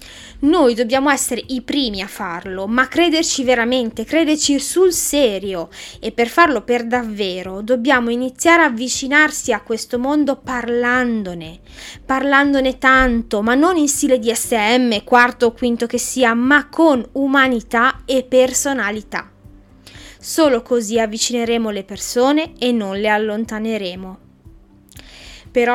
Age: 20-39